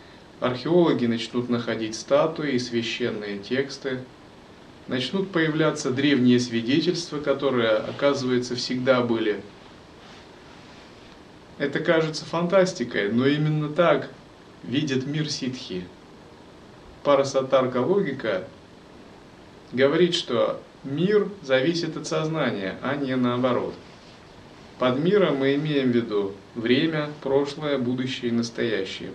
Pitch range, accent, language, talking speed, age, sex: 120-155 Hz, native, Russian, 95 wpm, 30-49, male